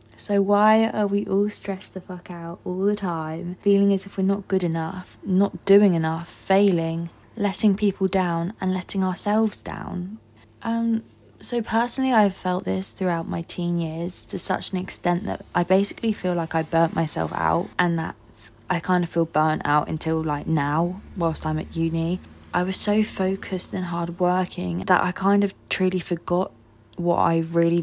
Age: 20-39